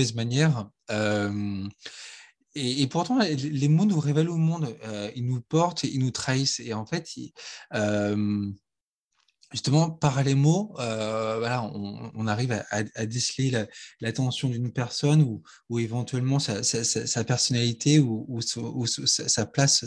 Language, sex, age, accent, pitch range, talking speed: French, male, 20-39, French, 110-140 Hz, 110 wpm